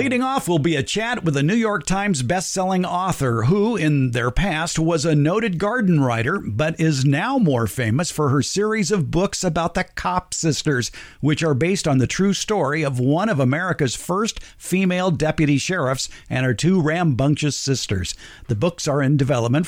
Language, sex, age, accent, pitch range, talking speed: English, male, 50-69, American, 140-190 Hz, 185 wpm